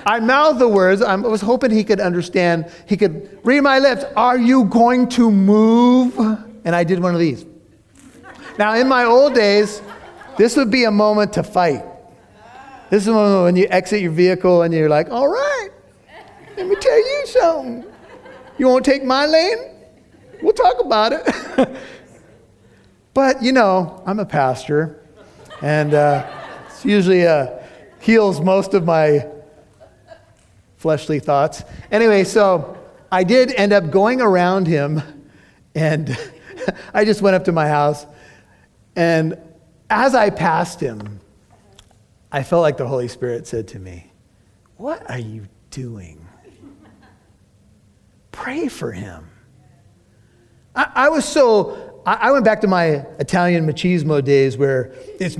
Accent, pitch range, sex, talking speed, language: American, 150-230 Hz, male, 145 wpm, English